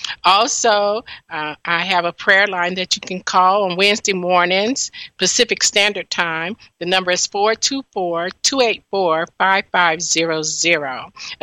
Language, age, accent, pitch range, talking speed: English, 50-69, American, 175-215 Hz, 110 wpm